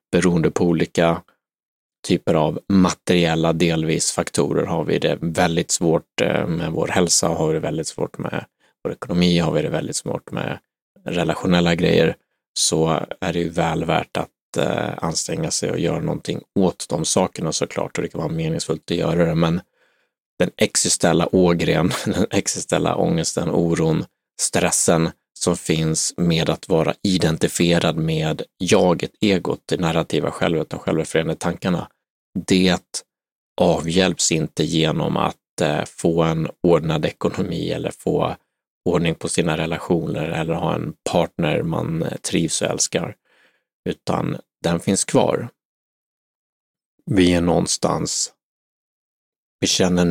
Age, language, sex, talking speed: 30-49, Swedish, male, 135 wpm